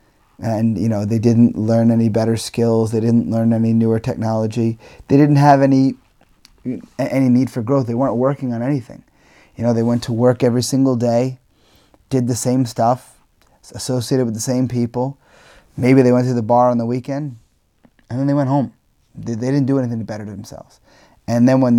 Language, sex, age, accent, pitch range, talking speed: English, male, 30-49, American, 115-130 Hz, 195 wpm